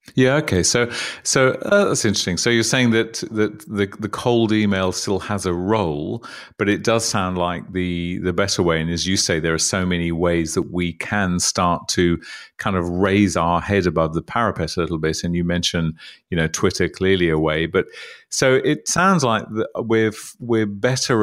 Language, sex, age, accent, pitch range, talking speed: English, male, 40-59, British, 85-105 Hz, 200 wpm